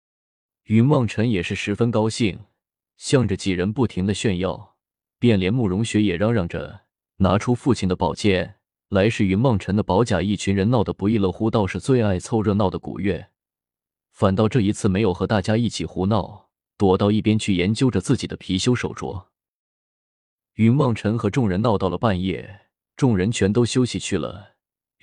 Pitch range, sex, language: 95-115 Hz, male, Chinese